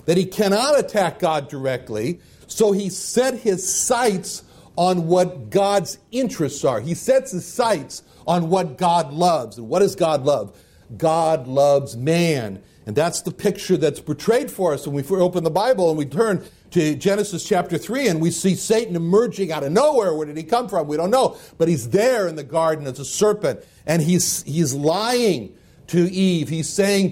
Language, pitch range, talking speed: English, 150-195 Hz, 190 wpm